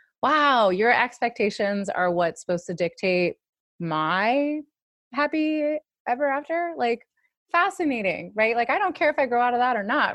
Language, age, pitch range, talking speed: English, 20-39, 180-275 Hz, 160 wpm